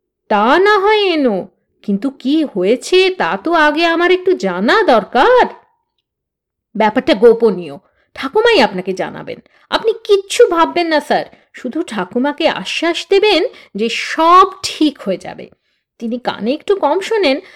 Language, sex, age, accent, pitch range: Bengali, female, 50-69, native, 215-360 Hz